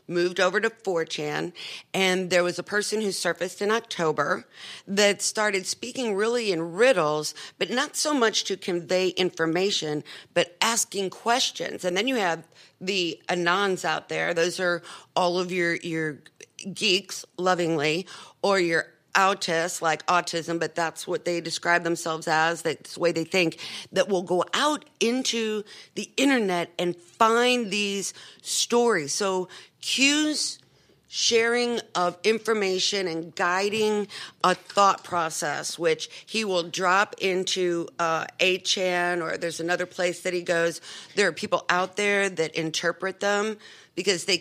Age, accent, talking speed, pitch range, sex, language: 50-69, American, 145 wpm, 170-200 Hz, female, English